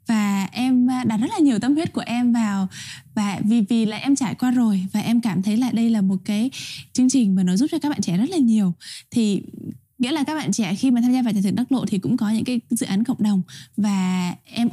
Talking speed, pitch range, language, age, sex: 270 wpm, 195-250 Hz, Vietnamese, 10-29, female